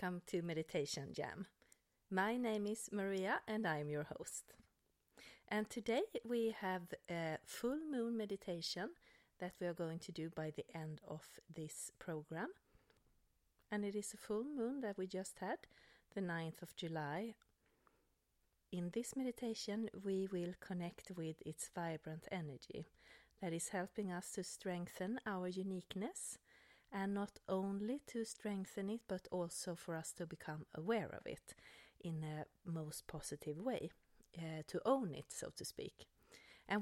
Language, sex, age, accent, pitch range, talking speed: English, female, 40-59, Swedish, 165-210 Hz, 150 wpm